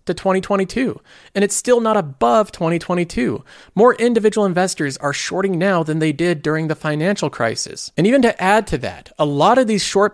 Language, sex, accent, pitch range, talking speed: English, male, American, 135-185 Hz, 190 wpm